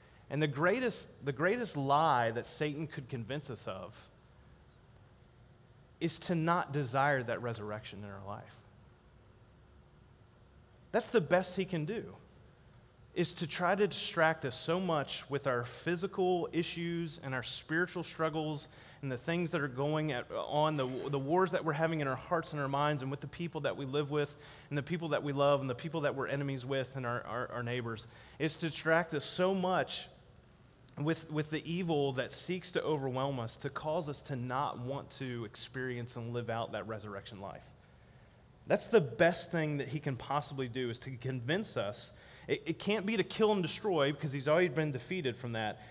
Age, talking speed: 30-49, 190 wpm